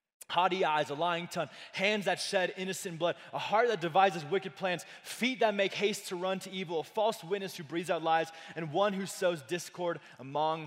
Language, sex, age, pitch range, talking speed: English, male, 20-39, 155-210 Hz, 210 wpm